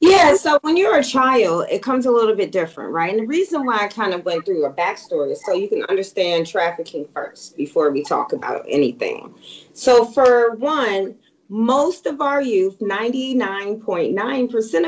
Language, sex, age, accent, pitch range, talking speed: English, female, 30-49, American, 200-290 Hz, 175 wpm